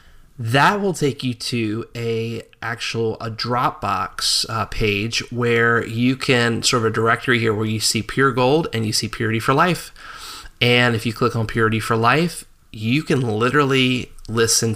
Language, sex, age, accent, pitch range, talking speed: English, male, 20-39, American, 110-125 Hz, 165 wpm